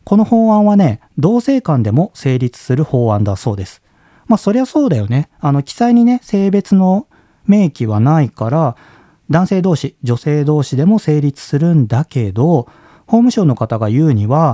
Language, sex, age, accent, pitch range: Japanese, male, 40-59, native, 120-190 Hz